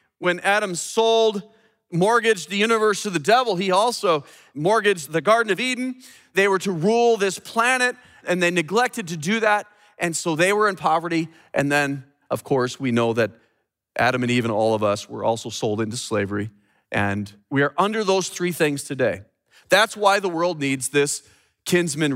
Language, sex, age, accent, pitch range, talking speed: English, male, 40-59, American, 145-205 Hz, 185 wpm